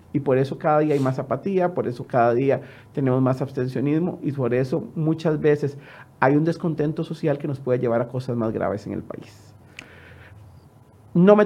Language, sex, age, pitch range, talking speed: Spanish, male, 40-59, 125-160 Hz, 195 wpm